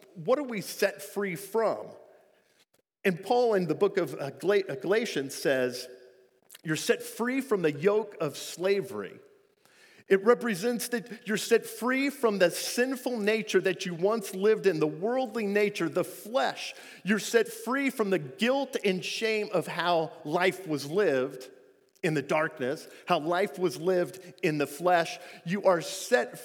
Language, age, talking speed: English, 50-69, 155 wpm